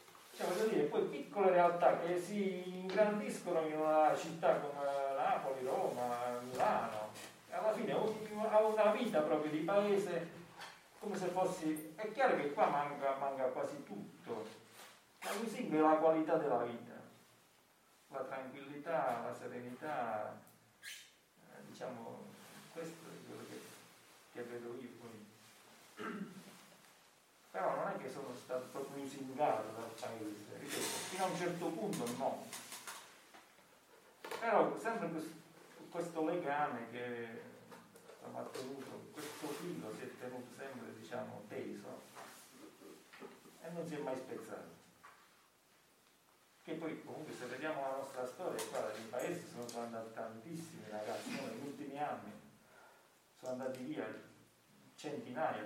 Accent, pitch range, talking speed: native, 125-180 Hz, 125 wpm